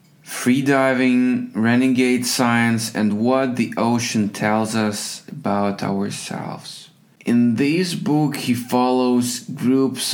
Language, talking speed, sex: English, 100 wpm, male